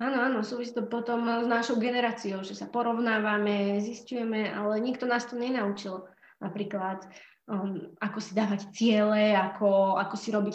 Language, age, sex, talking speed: Slovak, 20-39, female, 150 wpm